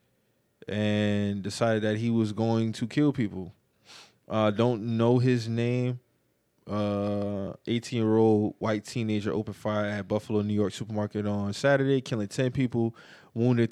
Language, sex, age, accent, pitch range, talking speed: English, male, 20-39, American, 110-125 Hz, 135 wpm